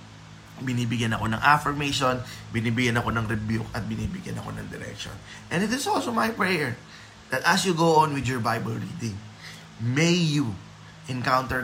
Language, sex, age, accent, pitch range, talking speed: Filipino, male, 20-39, native, 105-130 Hz, 160 wpm